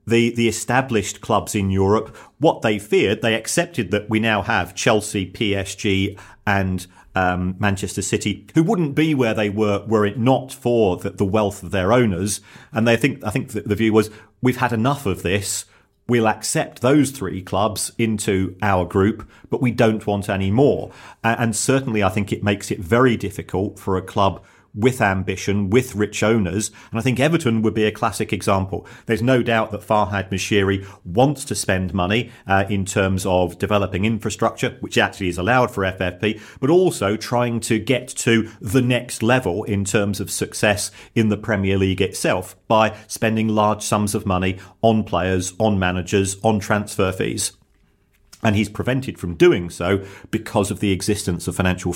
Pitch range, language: 95-115 Hz, English